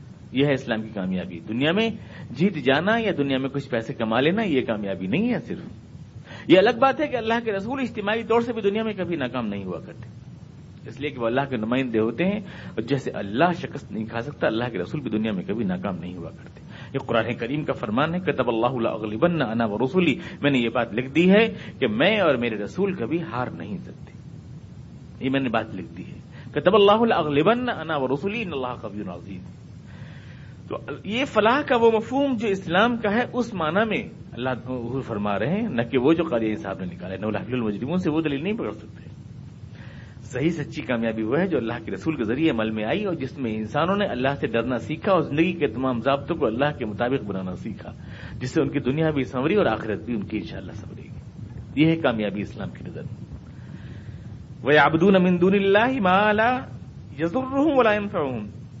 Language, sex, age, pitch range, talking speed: Urdu, male, 50-69, 115-195 Hz, 210 wpm